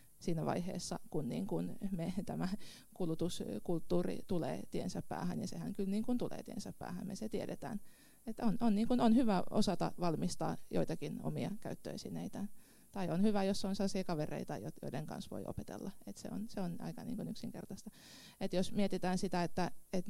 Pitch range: 170-205 Hz